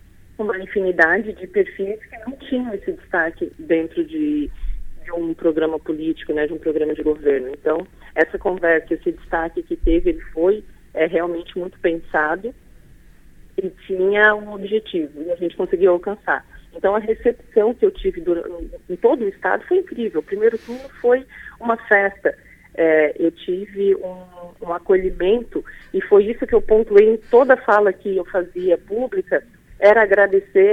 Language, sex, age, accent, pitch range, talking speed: Portuguese, female, 40-59, Brazilian, 185-260 Hz, 160 wpm